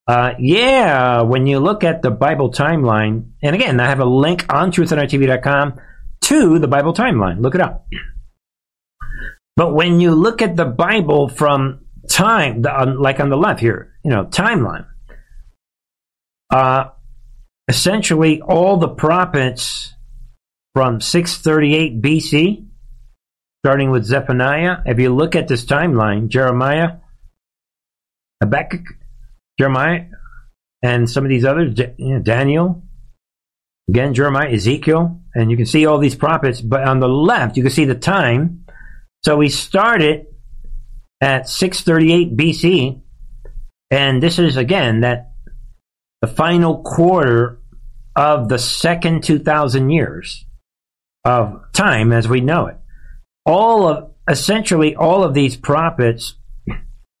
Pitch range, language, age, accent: 120-160 Hz, English, 50-69, American